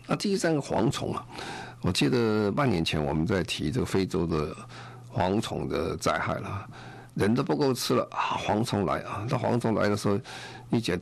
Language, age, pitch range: Chinese, 50-69, 90-120 Hz